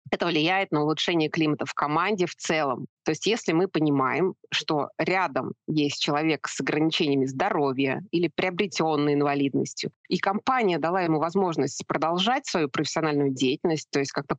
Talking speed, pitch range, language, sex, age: 150 wpm, 140-175 Hz, Russian, female, 20-39